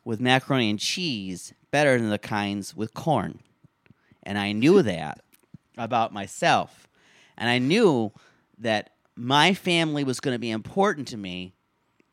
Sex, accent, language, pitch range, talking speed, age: male, American, English, 125-190 Hz, 145 wpm, 40-59